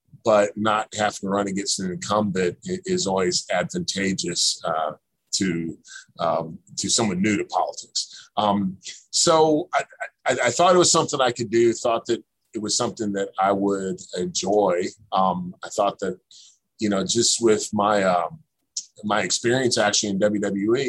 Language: English